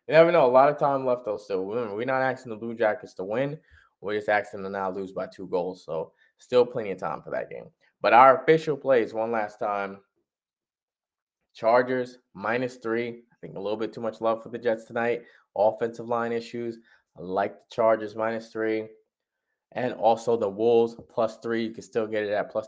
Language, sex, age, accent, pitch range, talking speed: English, male, 20-39, American, 110-125 Hz, 210 wpm